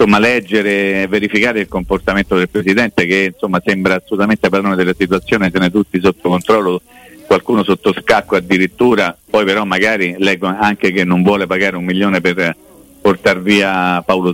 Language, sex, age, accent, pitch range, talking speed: Italian, male, 50-69, native, 90-105 Hz, 165 wpm